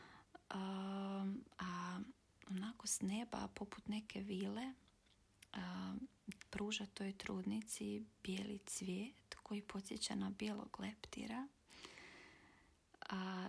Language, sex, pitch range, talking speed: Croatian, female, 180-215 Hz, 90 wpm